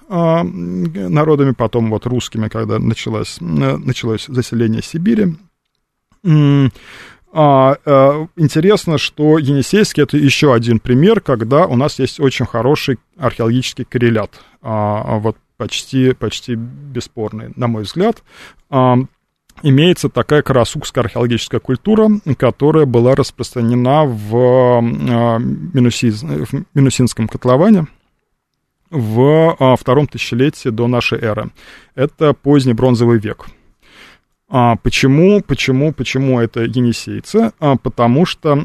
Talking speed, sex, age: 100 wpm, male, 20-39